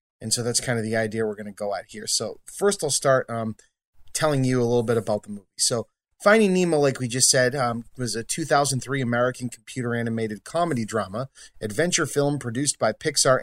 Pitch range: 115-140 Hz